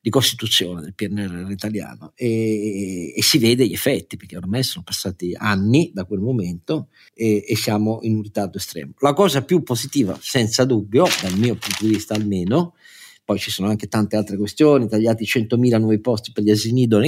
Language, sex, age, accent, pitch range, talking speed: Italian, male, 50-69, native, 105-125 Hz, 185 wpm